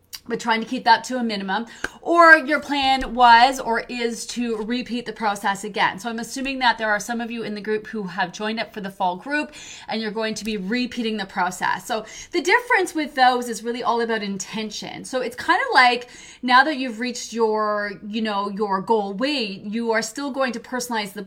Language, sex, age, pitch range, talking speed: English, female, 30-49, 210-250 Hz, 225 wpm